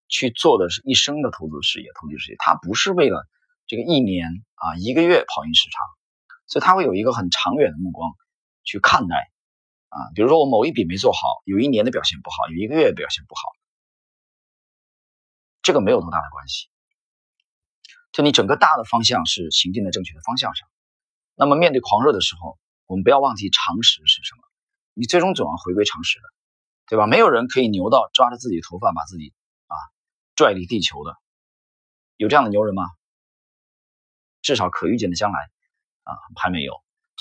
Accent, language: native, Chinese